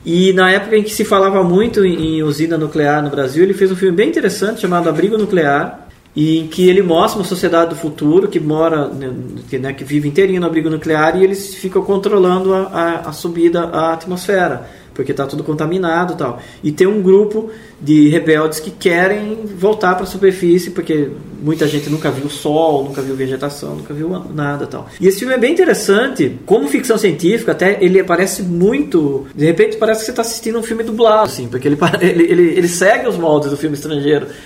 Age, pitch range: 20-39, 150-195 Hz